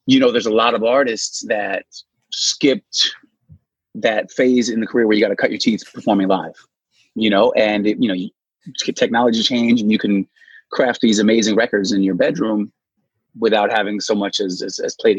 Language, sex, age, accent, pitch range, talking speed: English, male, 30-49, American, 100-120 Hz, 190 wpm